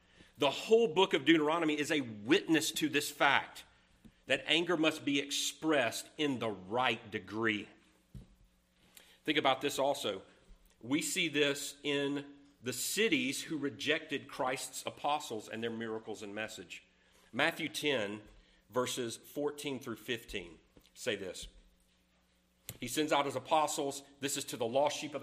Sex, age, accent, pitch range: male, 40-59, American, 115-155 Hz